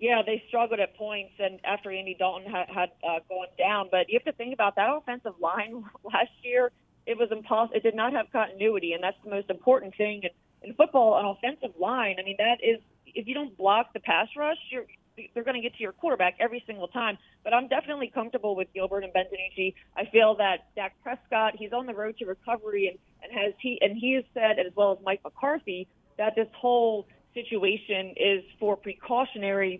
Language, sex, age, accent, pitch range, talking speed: English, female, 30-49, American, 190-235 Hz, 215 wpm